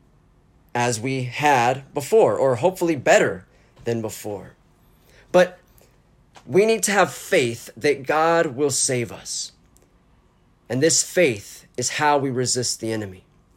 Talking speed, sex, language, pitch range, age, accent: 130 wpm, male, English, 125-175 Hz, 30-49, American